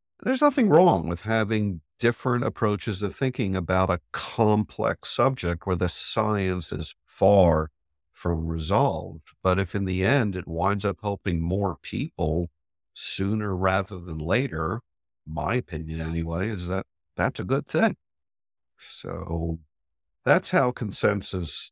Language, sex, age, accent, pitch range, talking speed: English, male, 50-69, American, 85-110 Hz, 135 wpm